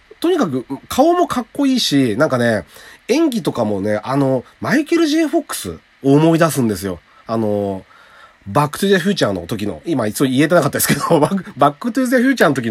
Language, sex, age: Japanese, male, 40-59